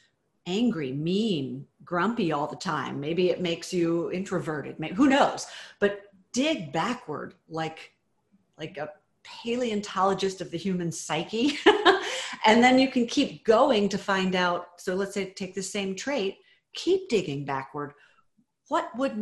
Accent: American